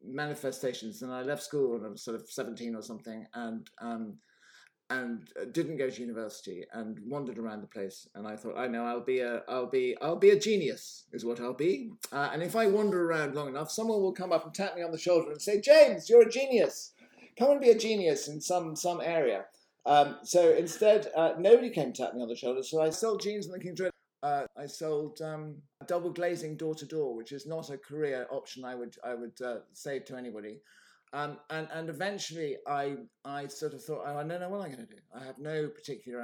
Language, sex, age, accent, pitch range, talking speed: English, male, 50-69, British, 125-175 Hz, 240 wpm